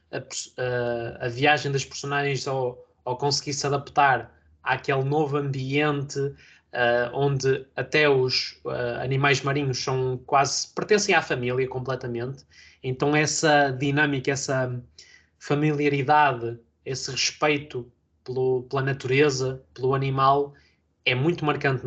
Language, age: Portuguese, 20-39